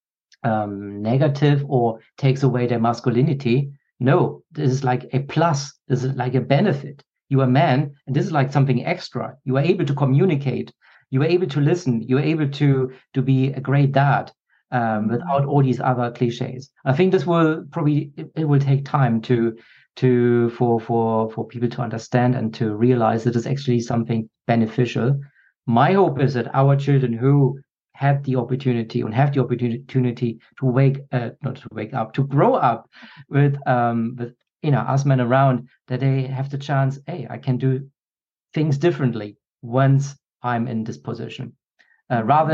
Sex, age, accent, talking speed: male, 40-59, German, 180 wpm